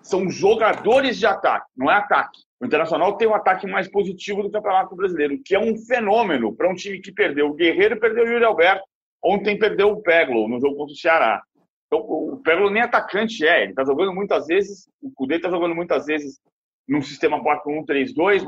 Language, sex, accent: Portuguese, male, Brazilian